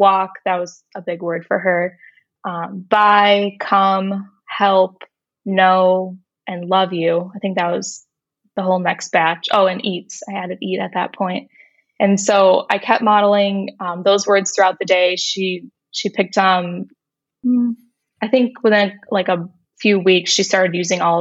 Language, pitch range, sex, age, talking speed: English, 175-200 Hz, female, 20-39, 170 wpm